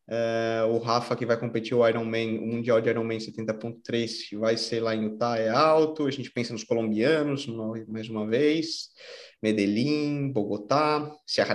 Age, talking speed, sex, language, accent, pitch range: 20-39, 165 wpm, male, Portuguese, Brazilian, 130-175 Hz